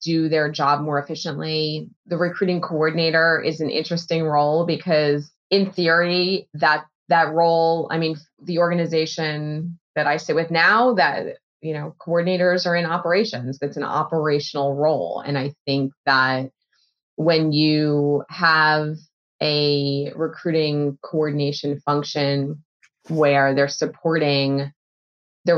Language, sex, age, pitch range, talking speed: English, female, 20-39, 145-170 Hz, 125 wpm